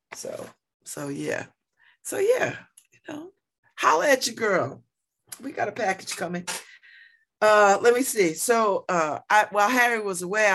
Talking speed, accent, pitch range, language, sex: 155 wpm, American, 155-240 Hz, English, female